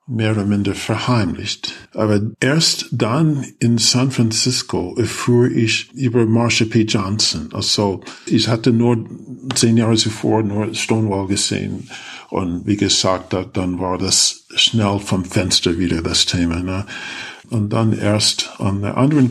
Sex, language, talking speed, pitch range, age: male, German, 135 wpm, 105-120 Hz, 50-69